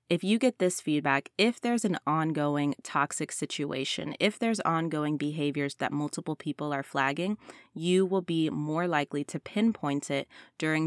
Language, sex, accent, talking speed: English, female, American, 160 wpm